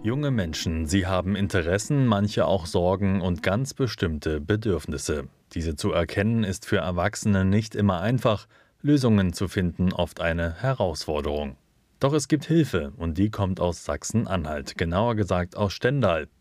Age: 30-49